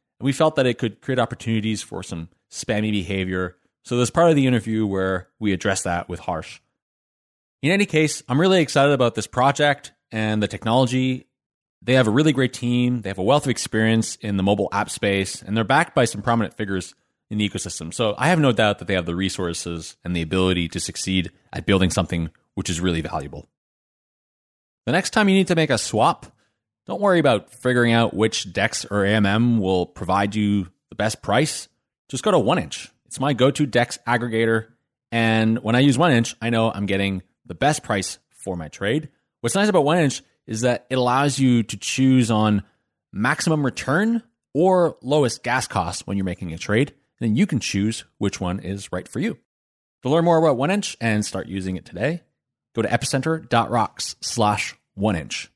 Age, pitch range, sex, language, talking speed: 30-49, 95-130 Hz, male, English, 195 wpm